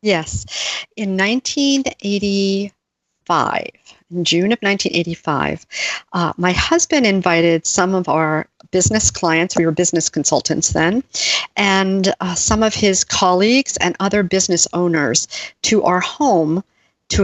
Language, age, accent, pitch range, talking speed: English, 50-69, American, 165-205 Hz, 120 wpm